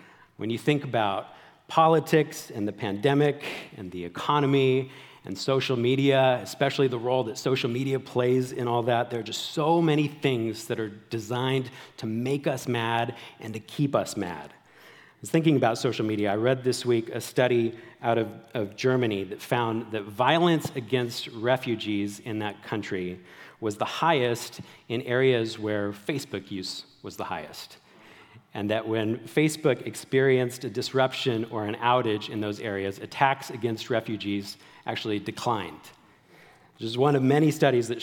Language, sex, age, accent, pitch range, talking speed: English, male, 40-59, American, 110-130 Hz, 165 wpm